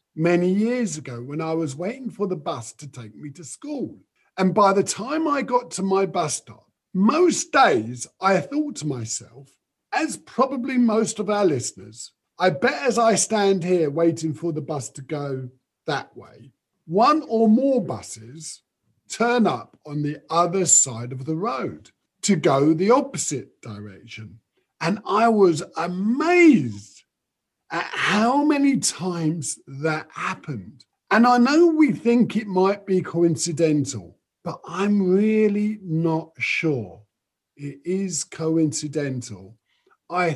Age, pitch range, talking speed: 50-69, 140-205 Hz, 145 wpm